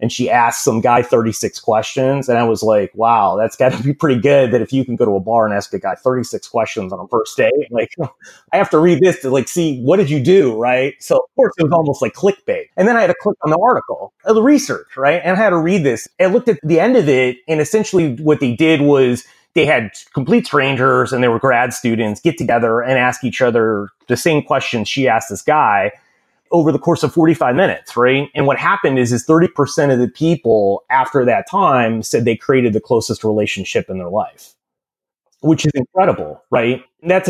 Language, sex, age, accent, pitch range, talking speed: English, male, 30-49, American, 125-165 Hz, 230 wpm